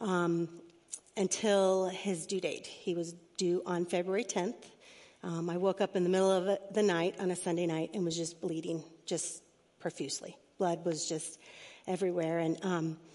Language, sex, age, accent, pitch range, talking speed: English, female, 40-59, American, 170-200 Hz, 170 wpm